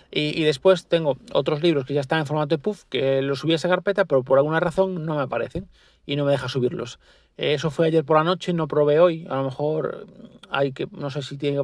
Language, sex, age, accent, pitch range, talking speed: Spanish, male, 40-59, Spanish, 135-155 Hz, 260 wpm